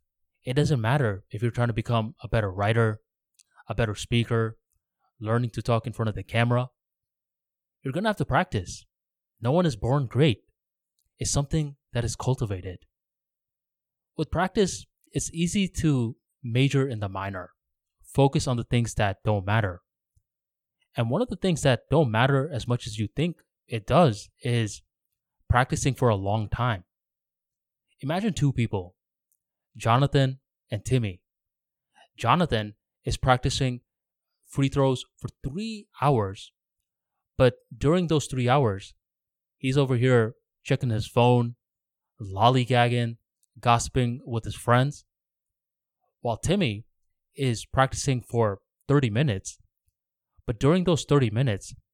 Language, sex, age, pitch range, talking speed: English, male, 20-39, 105-140 Hz, 135 wpm